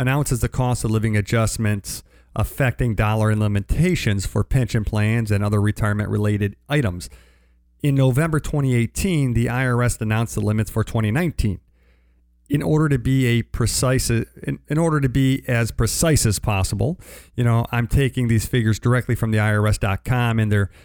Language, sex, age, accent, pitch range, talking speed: English, male, 50-69, American, 105-130 Hz, 155 wpm